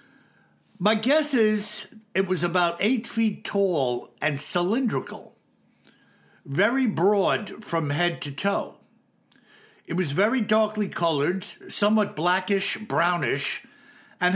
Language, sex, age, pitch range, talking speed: English, male, 60-79, 160-215 Hz, 110 wpm